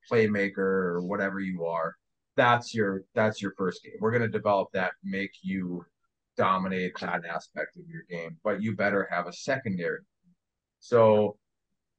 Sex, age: male, 30-49